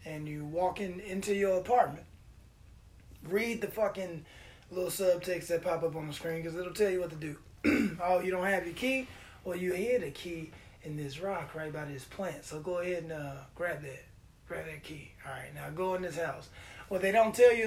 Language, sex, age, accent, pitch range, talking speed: English, male, 20-39, American, 150-205 Hz, 215 wpm